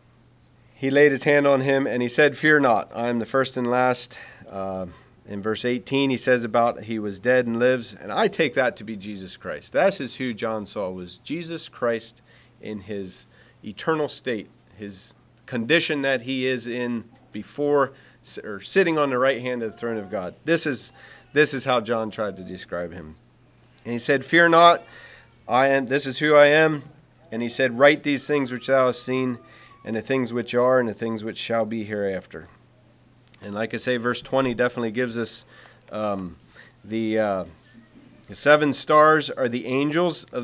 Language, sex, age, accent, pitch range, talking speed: English, male, 40-59, American, 115-140 Hz, 195 wpm